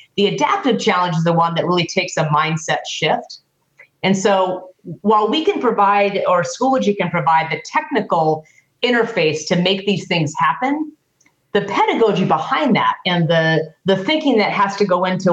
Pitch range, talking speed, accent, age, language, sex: 160-200 Hz, 170 wpm, American, 40-59, English, female